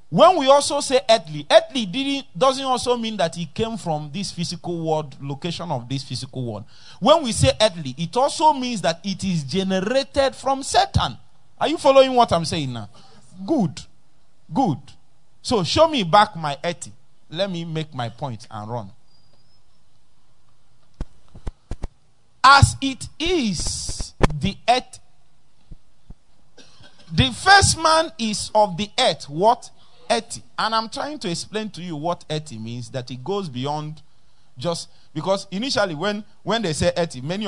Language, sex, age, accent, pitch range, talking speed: English, male, 40-59, Nigerian, 140-230 Hz, 150 wpm